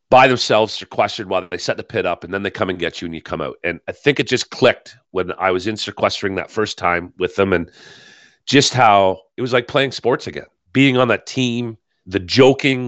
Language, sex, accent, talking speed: English, male, American, 240 wpm